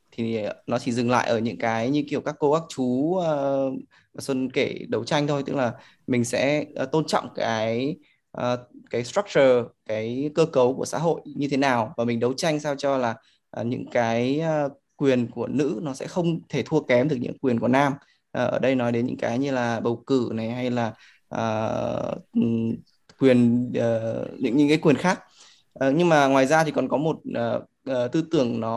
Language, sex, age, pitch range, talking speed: Vietnamese, male, 20-39, 115-145 Hz, 210 wpm